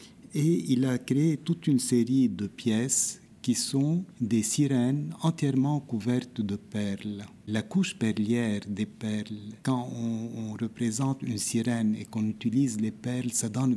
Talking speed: 155 wpm